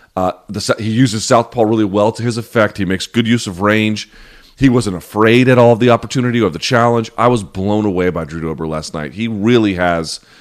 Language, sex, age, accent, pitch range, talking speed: English, male, 30-49, American, 100-120 Hz, 220 wpm